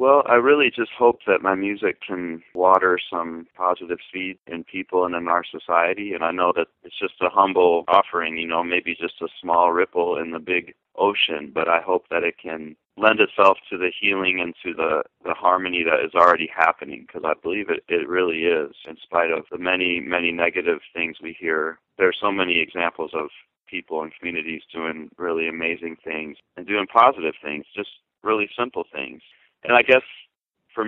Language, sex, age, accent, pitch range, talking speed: English, male, 30-49, American, 85-100 Hz, 195 wpm